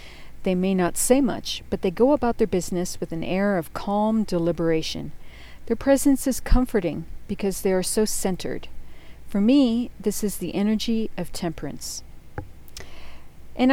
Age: 40-59